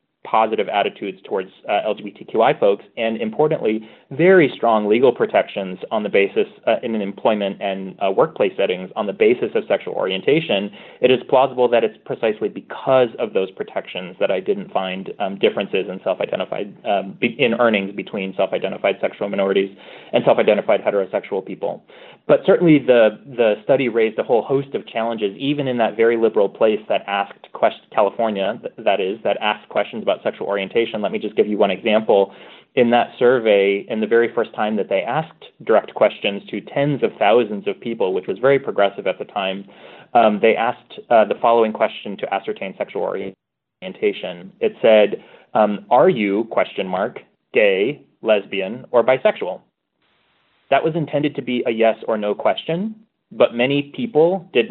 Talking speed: 170 wpm